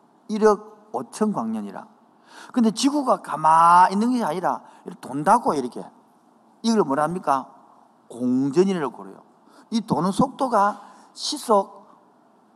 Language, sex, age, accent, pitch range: Korean, male, 50-69, native, 180-245 Hz